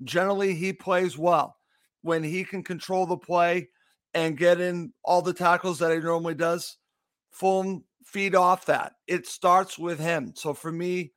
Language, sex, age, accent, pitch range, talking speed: English, male, 50-69, American, 165-190 Hz, 165 wpm